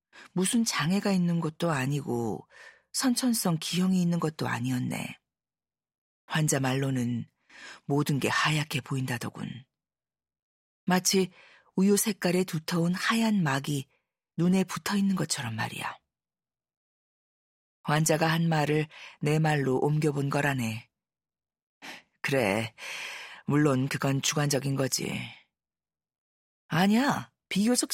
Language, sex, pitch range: Korean, female, 135-185 Hz